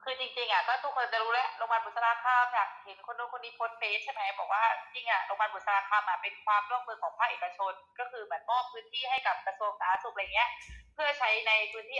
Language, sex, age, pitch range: Thai, female, 20-39, 200-250 Hz